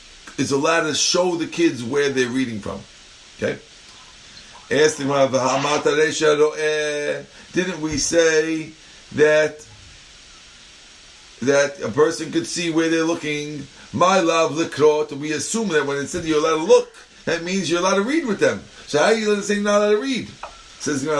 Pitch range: 135-185 Hz